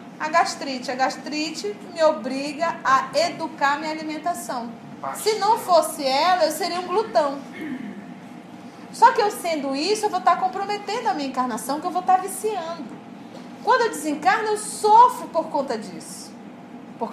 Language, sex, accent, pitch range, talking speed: Portuguese, female, Brazilian, 260-375 Hz, 155 wpm